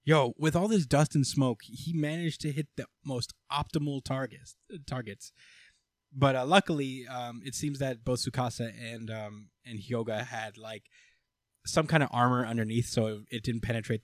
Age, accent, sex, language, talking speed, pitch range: 10-29, American, male, English, 170 wpm, 110-135 Hz